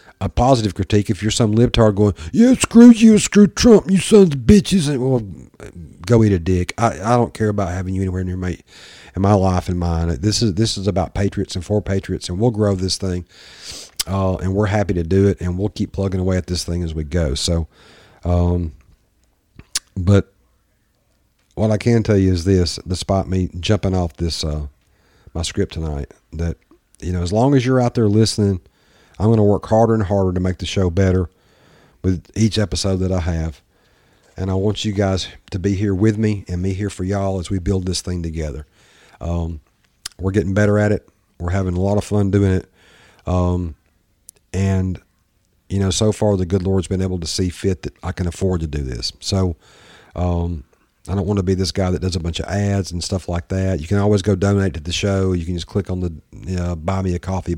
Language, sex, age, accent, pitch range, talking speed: English, male, 40-59, American, 90-105 Hz, 220 wpm